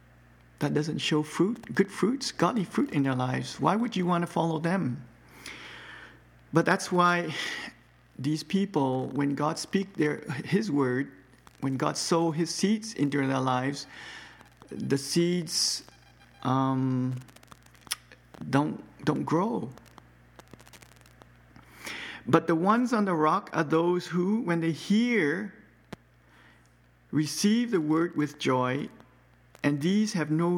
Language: English